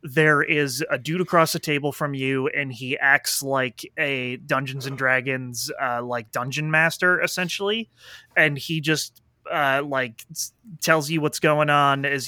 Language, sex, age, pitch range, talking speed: English, male, 30-49, 125-150 Hz, 160 wpm